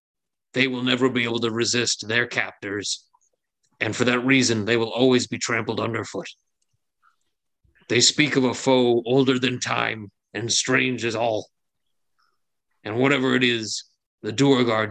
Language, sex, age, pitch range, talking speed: English, male, 30-49, 110-130 Hz, 150 wpm